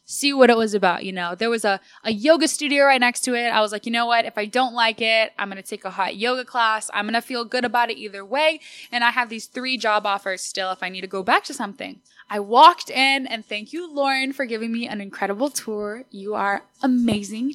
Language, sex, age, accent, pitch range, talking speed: English, female, 10-29, American, 200-255 Hz, 255 wpm